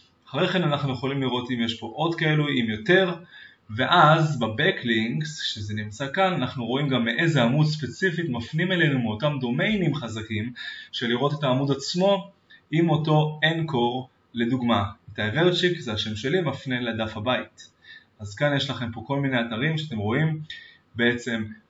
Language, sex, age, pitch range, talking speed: Hebrew, male, 20-39, 120-165 Hz, 155 wpm